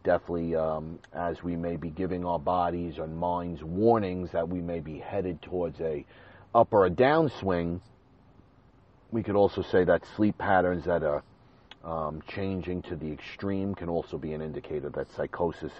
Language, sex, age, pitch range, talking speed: English, male, 40-59, 85-95 Hz, 165 wpm